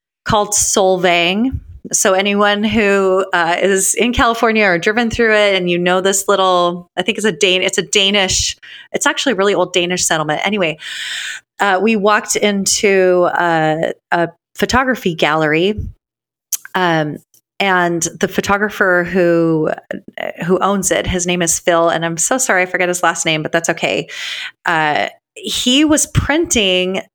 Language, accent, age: English, American, 30-49